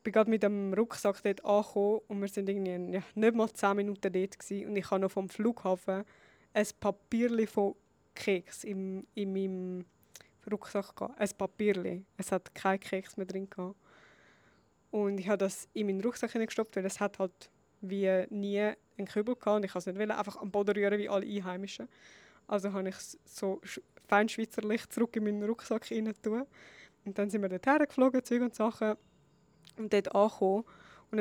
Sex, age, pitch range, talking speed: female, 20-39, 190-210 Hz, 175 wpm